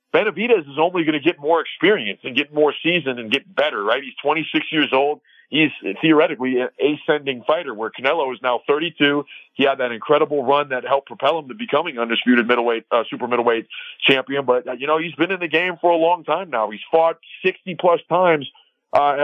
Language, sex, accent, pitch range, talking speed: English, male, American, 125-155 Hz, 205 wpm